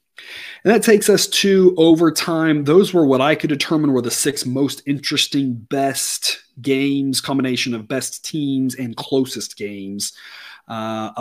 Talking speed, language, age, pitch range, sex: 145 wpm, English, 30-49, 125-160 Hz, male